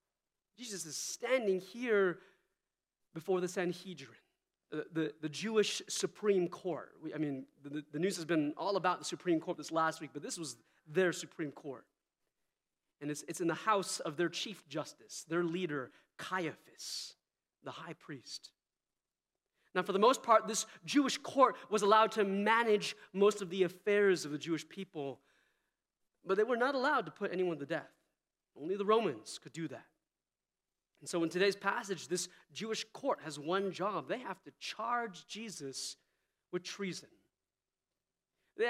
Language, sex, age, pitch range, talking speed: English, male, 30-49, 160-210 Hz, 160 wpm